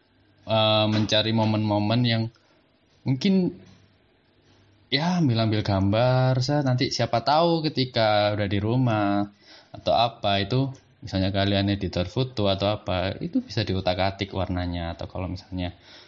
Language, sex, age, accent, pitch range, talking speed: Indonesian, male, 20-39, native, 95-115 Hz, 115 wpm